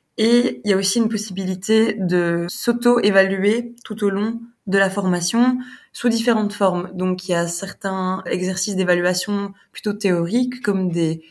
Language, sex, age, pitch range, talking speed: French, female, 20-39, 190-230 Hz, 155 wpm